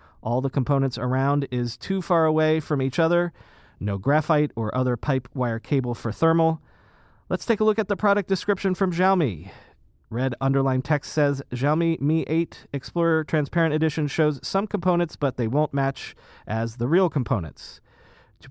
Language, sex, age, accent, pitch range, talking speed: English, male, 40-59, American, 125-165 Hz, 170 wpm